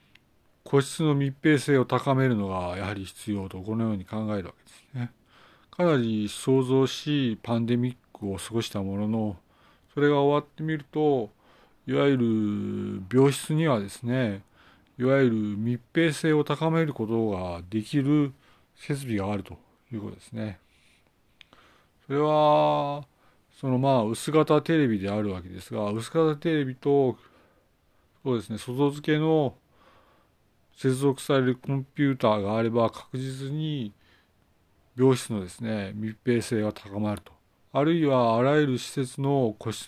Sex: male